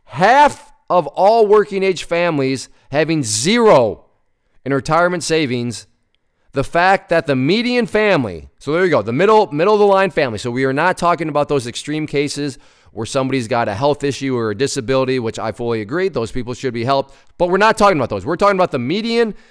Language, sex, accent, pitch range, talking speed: English, male, American, 125-175 Hz, 205 wpm